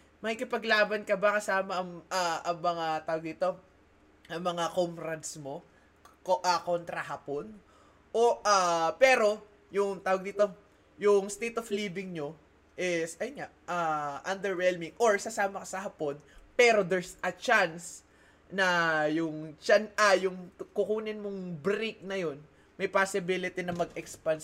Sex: male